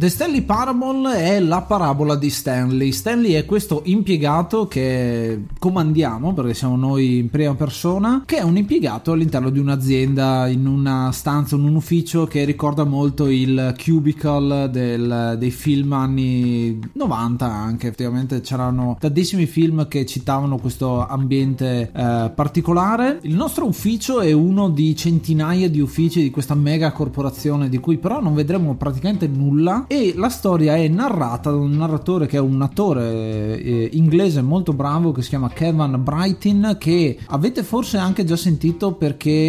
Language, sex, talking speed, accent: Italian, male, 155 wpm, native